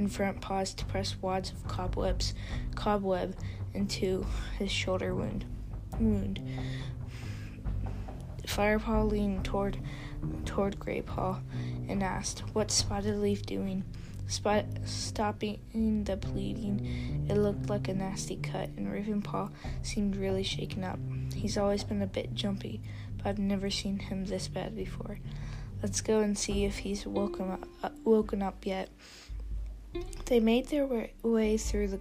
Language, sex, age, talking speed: English, female, 10-29, 135 wpm